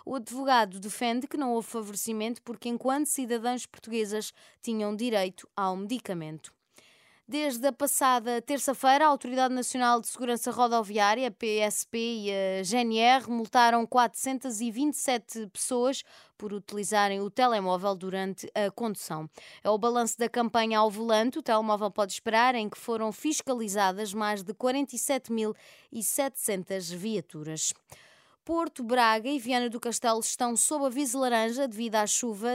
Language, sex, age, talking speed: Portuguese, female, 20-39, 130 wpm